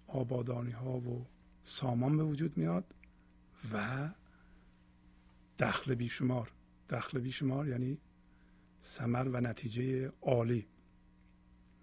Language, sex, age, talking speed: Persian, male, 50-69, 85 wpm